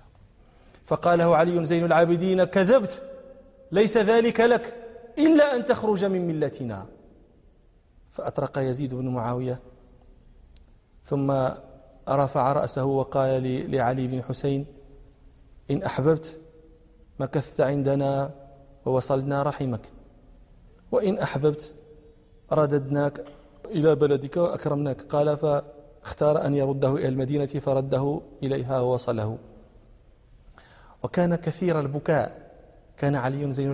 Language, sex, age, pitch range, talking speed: Arabic, male, 40-59, 135-195 Hz, 90 wpm